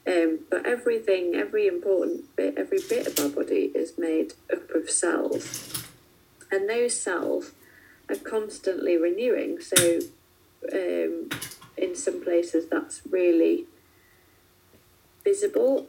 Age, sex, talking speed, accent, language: 30-49, female, 115 wpm, British, English